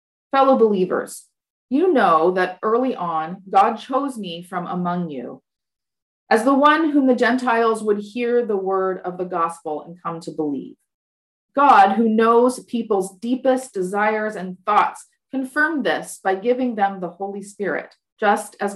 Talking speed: 155 wpm